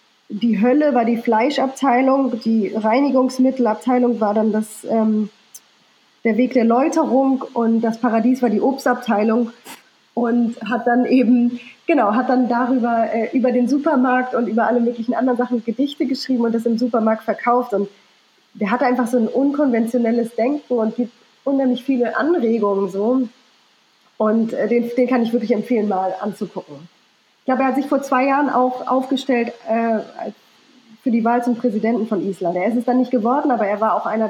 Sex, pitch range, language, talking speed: female, 220-255 Hz, German, 170 wpm